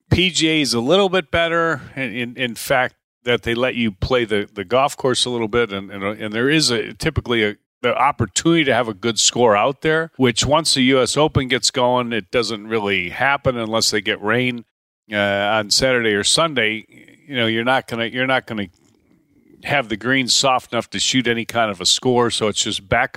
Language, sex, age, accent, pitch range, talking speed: English, male, 40-59, American, 110-140 Hz, 205 wpm